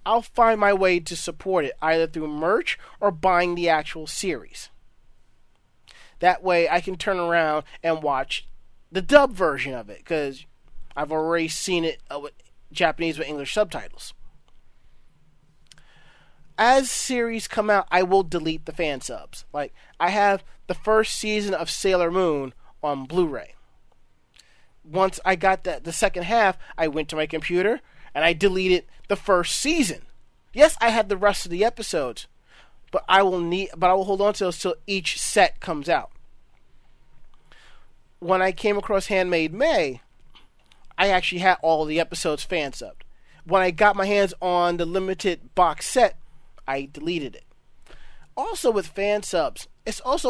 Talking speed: 160 wpm